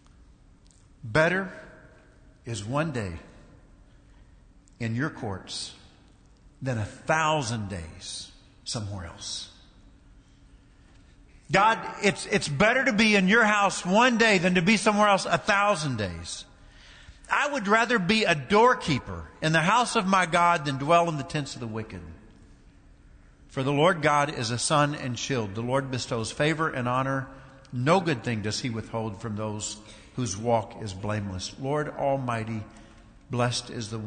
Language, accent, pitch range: English, American, 100-150 Hz